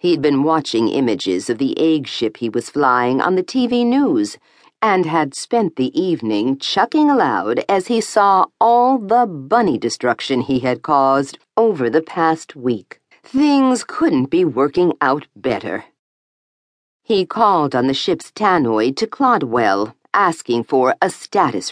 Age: 50-69